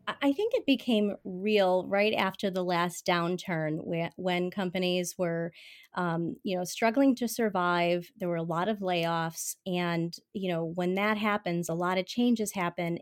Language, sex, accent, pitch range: English, female, American, 170-205 Hz